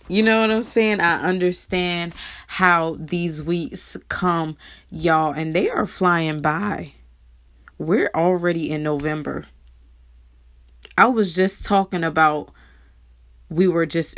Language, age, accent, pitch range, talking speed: English, 20-39, American, 150-180 Hz, 125 wpm